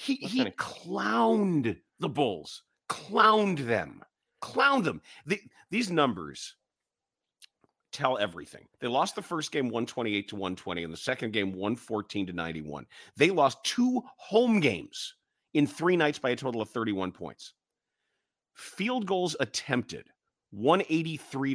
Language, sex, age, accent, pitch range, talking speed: English, male, 40-59, American, 105-175 Hz, 130 wpm